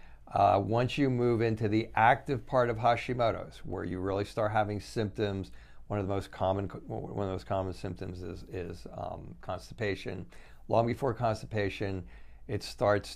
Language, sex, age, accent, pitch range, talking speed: English, male, 50-69, American, 95-110 Hz, 165 wpm